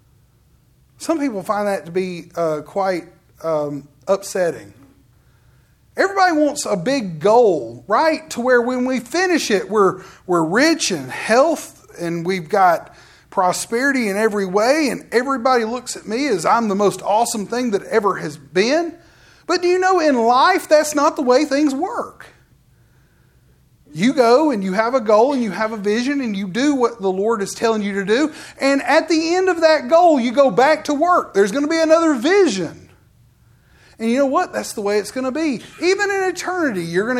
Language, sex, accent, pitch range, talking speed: English, male, American, 200-315 Hz, 190 wpm